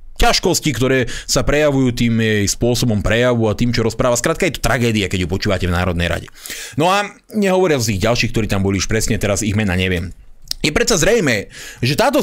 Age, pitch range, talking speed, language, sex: 30-49, 145-220 Hz, 200 wpm, Slovak, male